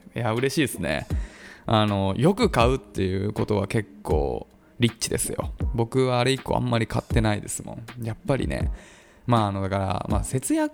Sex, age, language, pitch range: male, 20-39, Japanese, 105-175 Hz